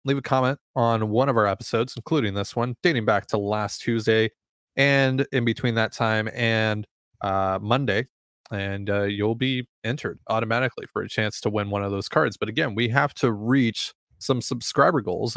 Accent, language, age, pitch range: American, English, 20-39, 105-140 Hz